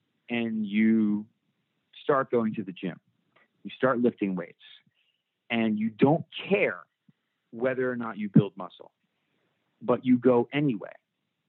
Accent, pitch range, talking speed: American, 105-135 Hz, 130 wpm